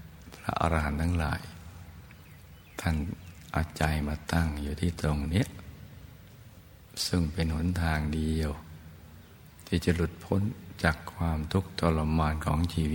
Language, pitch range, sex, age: Thai, 80-90 Hz, male, 60-79